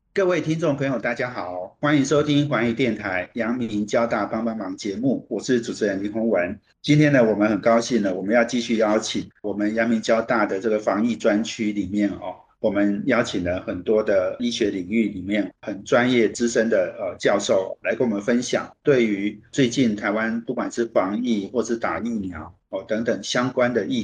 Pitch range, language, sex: 105-120 Hz, Chinese, male